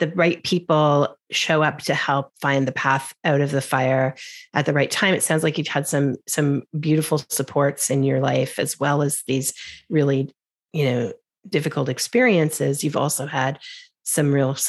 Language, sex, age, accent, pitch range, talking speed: English, female, 40-59, American, 140-165 Hz, 180 wpm